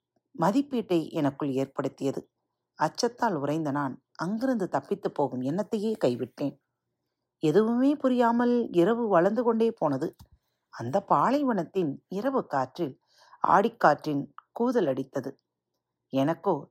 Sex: female